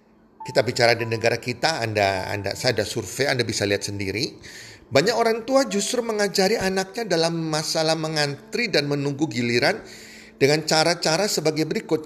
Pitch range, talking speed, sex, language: 140-215 Hz, 150 wpm, male, Indonesian